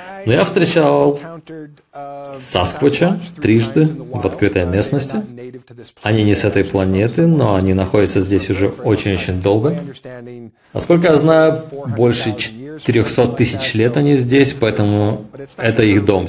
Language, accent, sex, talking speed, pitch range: Russian, native, male, 120 wpm, 105-135 Hz